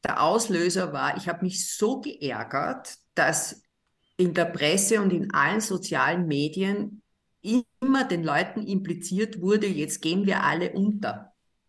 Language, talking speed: German, 140 wpm